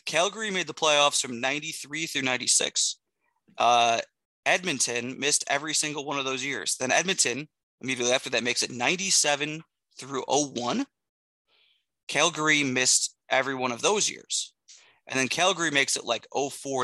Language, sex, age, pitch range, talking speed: English, male, 20-39, 125-155 Hz, 145 wpm